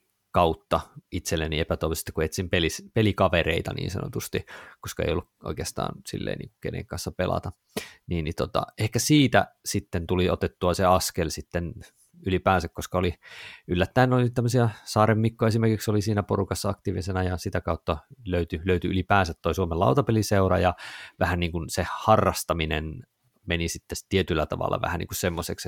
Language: Finnish